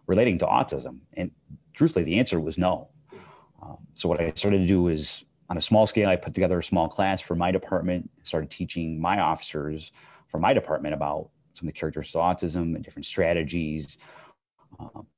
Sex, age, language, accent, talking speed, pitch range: male, 30-49, English, American, 190 wpm, 75-90 Hz